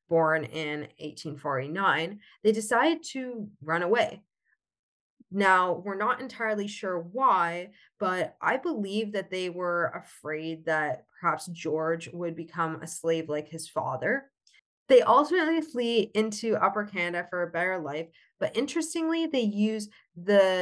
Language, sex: English, female